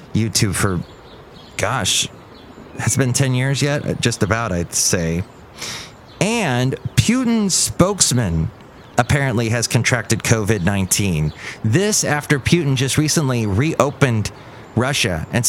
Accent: American